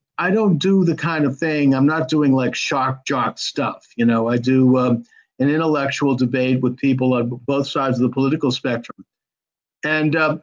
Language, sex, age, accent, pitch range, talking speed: English, male, 50-69, American, 125-155 Hz, 190 wpm